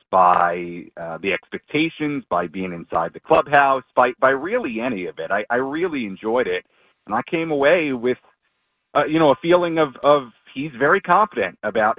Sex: male